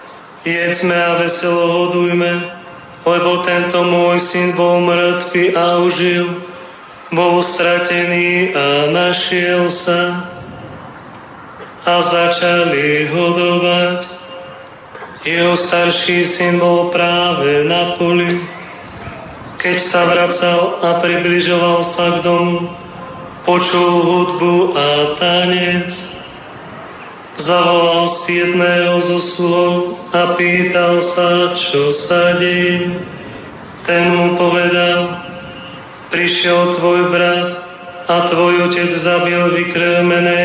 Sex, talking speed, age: male, 90 wpm, 30-49